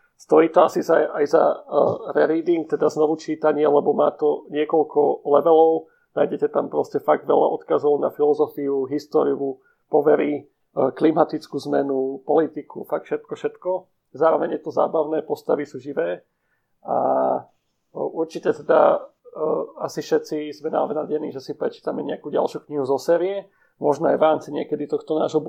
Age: 40-59